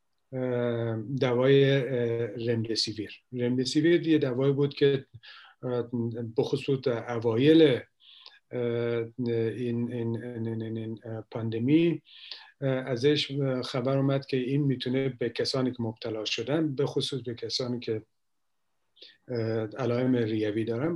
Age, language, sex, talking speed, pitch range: 50-69, Persian, male, 105 wpm, 120-145 Hz